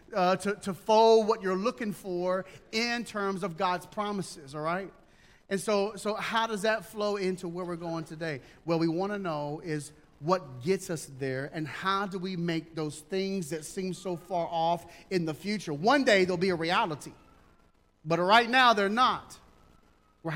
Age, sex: 40-59, male